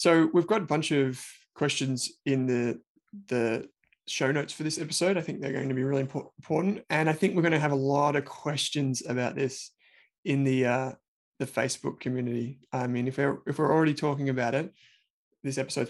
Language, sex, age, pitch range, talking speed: English, male, 20-39, 130-165 Hz, 205 wpm